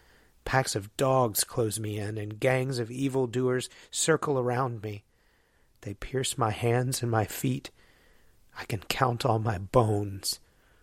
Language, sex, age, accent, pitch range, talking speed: English, male, 40-59, American, 115-130 Hz, 145 wpm